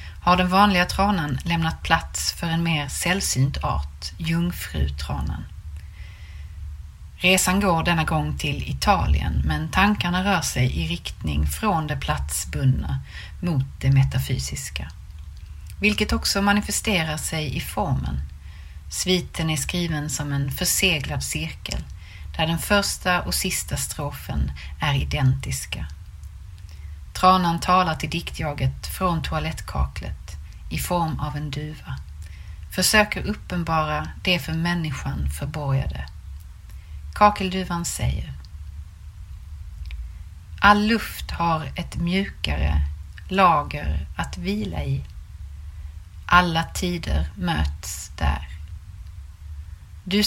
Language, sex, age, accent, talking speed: Swedish, female, 30-49, native, 100 wpm